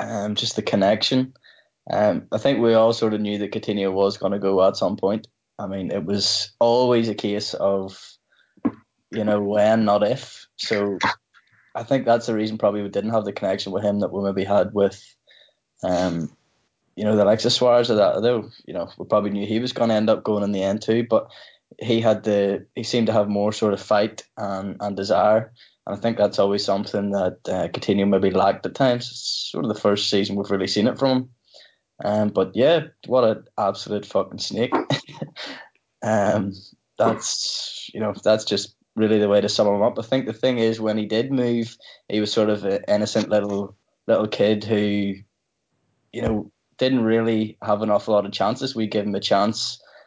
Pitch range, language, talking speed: 100-110 Hz, English, 210 wpm